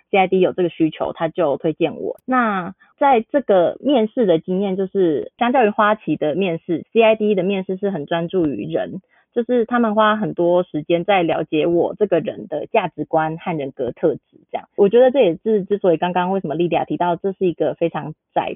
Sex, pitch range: female, 170-220 Hz